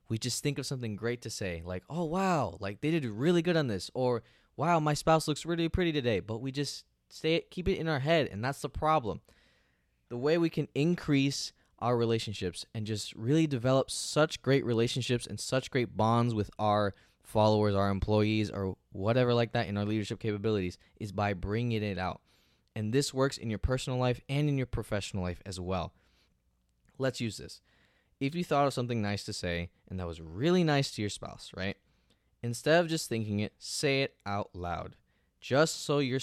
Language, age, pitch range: English, 20-39, 100-135 Hz